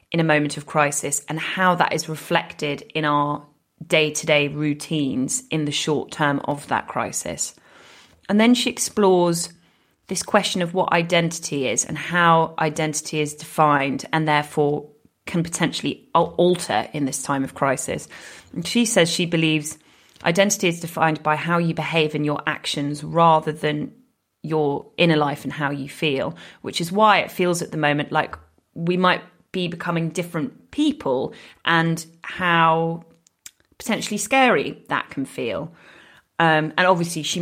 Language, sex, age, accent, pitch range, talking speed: English, female, 30-49, British, 145-170 Hz, 155 wpm